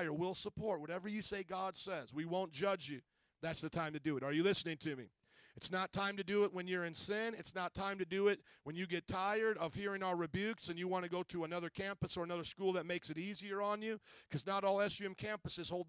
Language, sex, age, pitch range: English, male, 40-59, 155-195 Hz